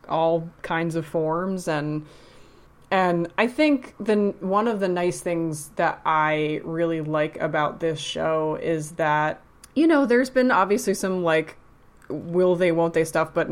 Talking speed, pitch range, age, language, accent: 160 wpm, 155-185 Hz, 20-39, English, American